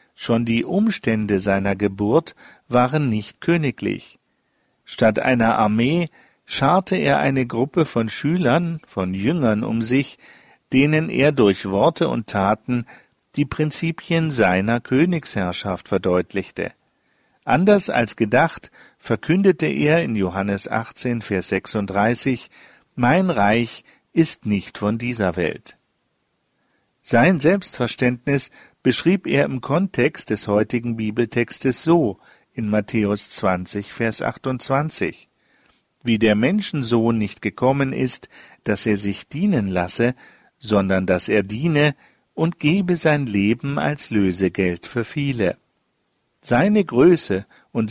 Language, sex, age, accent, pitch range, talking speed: German, male, 50-69, German, 105-150 Hz, 115 wpm